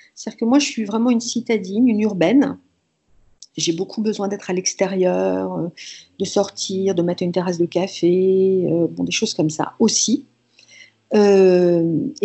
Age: 50-69